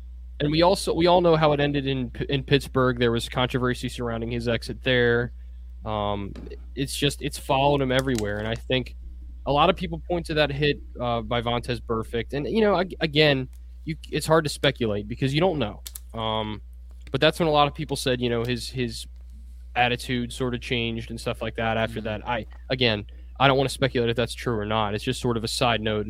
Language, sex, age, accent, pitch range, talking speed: English, male, 20-39, American, 105-135 Hz, 220 wpm